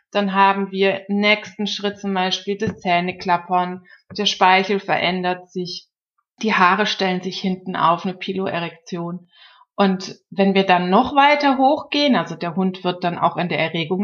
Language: German